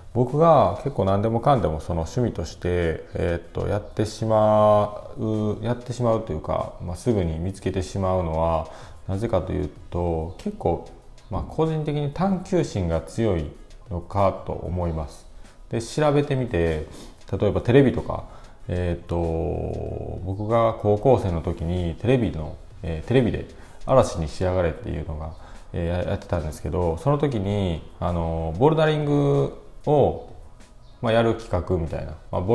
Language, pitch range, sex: Japanese, 85-115 Hz, male